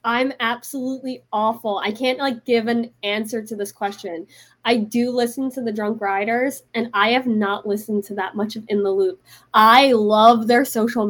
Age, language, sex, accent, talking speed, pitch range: 20-39, English, female, American, 190 wpm, 205-270 Hz